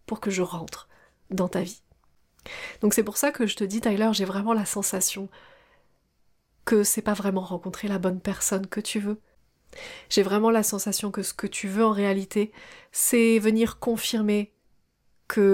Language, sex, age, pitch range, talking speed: French, female, 30-49, 195-230 Hz, 180 wpm